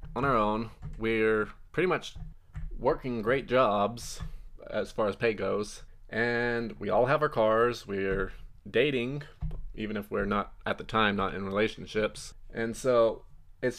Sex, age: male, 20-39